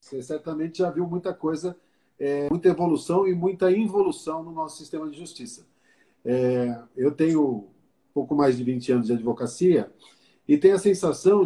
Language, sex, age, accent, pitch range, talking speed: Portuguese, male, 50-69, Brazilian, 140-190 Hz, 160 wpm